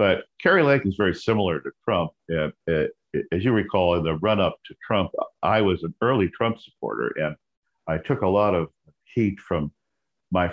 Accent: American